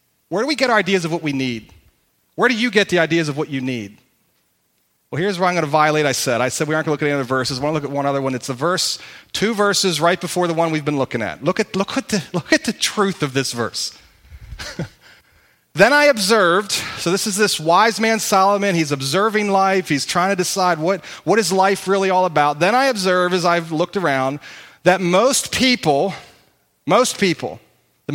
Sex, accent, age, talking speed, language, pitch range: male, American, 40-59, 235 wpm, English, 145-205 Hz